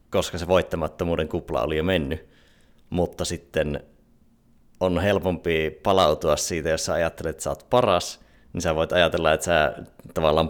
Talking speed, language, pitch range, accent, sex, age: 150 wpm, Finnish, 75-85 Hz, native, male, 30-49